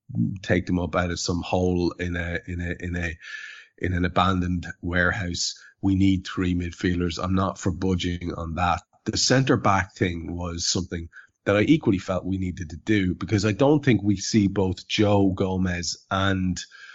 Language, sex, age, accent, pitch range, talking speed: English, male, 30-49, Irish, 90-100 Hz, 180 wpm